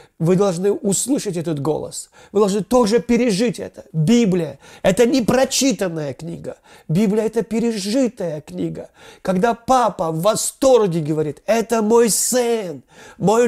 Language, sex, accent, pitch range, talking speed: Russian, male, native, 160-225 Hz, 125 wpm